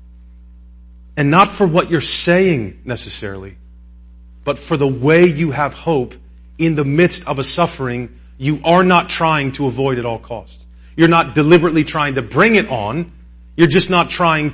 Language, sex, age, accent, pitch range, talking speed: English, male, 40-59, American, 105-170 Hz, 170 wpm